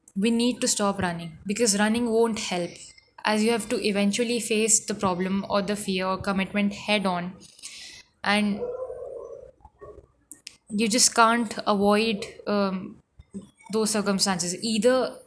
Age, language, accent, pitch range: 10-29, English, Indian, 200-230 Hz